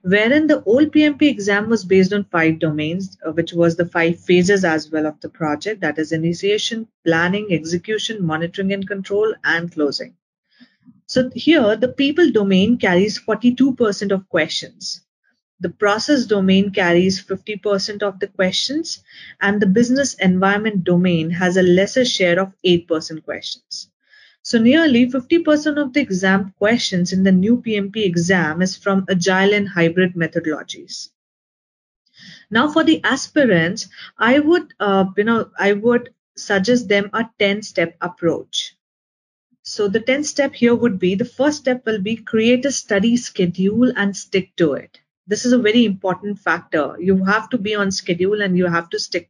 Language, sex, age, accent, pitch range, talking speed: English, female, 30-49, Indian, 185-240 Hz, 160 wpm